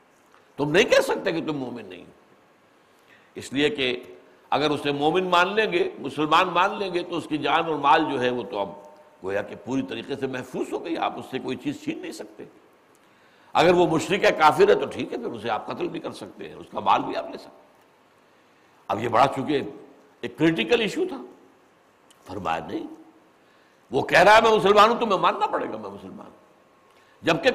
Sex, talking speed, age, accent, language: male, 205 wpm, 60-79, Indian, English